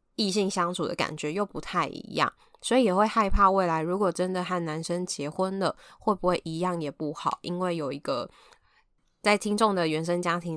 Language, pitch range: Chinese, 160-195 Hz